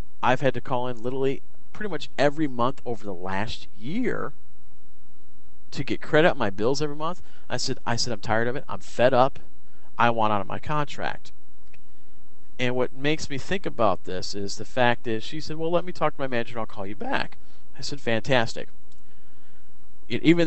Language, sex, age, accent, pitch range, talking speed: English, male, 40-59, American, 110-150 Hz, 205 wpm